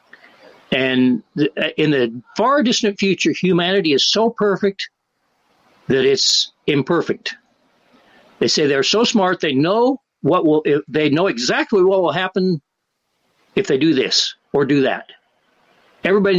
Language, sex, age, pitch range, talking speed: English, male, 60-79, 145-200 Hz, 120 wpm